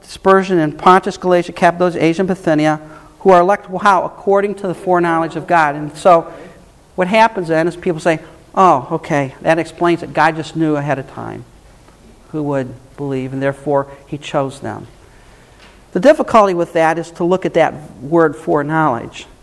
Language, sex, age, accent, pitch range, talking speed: English, male, 50-69, American, 150-180 Hz, 175 wpm